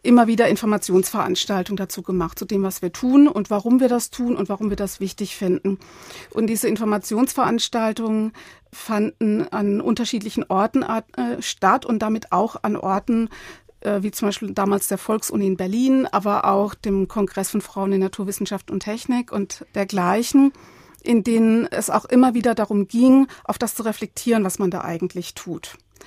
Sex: female